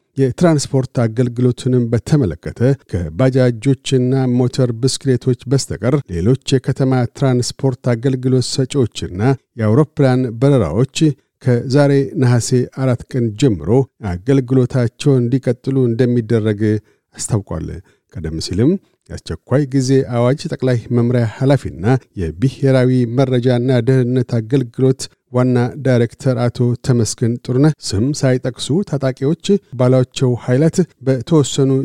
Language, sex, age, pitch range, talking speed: Amharic, male, 50-69, 120-135 Hz, 85 wpm